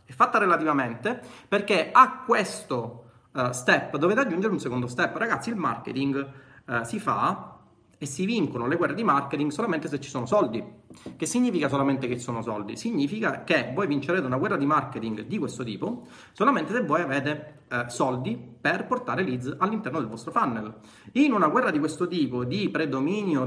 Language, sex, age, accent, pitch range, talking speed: Italian, male, 30-49, native, 125-170 Hz, 170 wpm